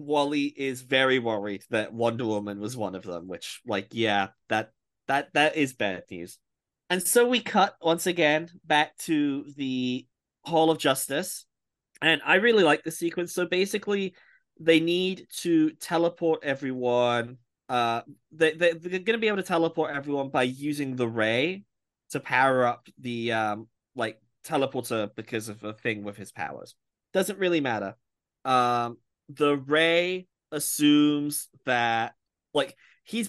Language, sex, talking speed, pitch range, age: English, male, 150 wpm, 110-150 Hz, 20-39